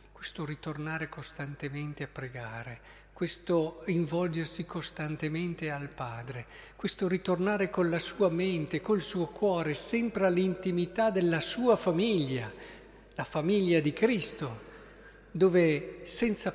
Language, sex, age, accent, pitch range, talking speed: Italian, male, 50-69, native, 150-200 Hz, 110 wpm